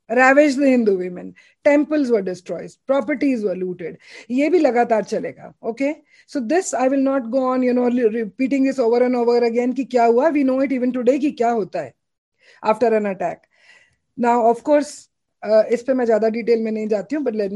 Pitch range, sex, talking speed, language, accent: 220-270 Hz, female, 170 wpm, English, Indian